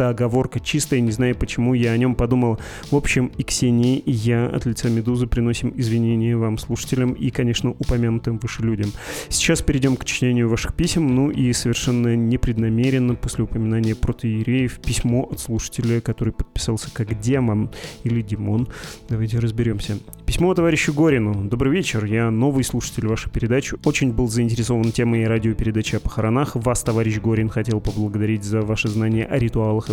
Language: Russian